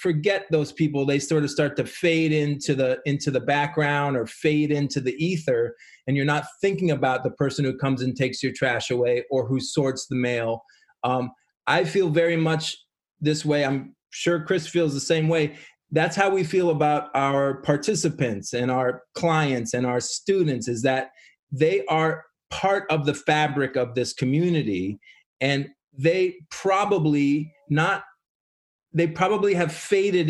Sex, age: male, 30-49